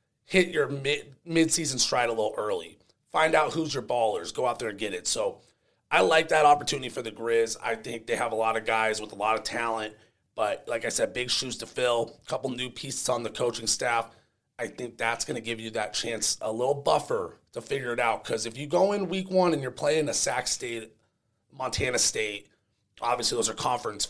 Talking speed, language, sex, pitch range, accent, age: 225 wpm, English, male, 115-150 Hz, American, 30-49